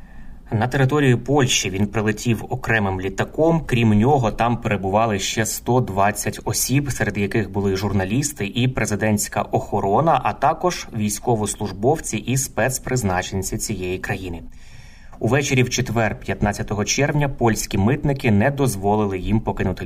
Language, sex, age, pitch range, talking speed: Ukrainian, male, 20-39, 100-120 Hz, 120 wpm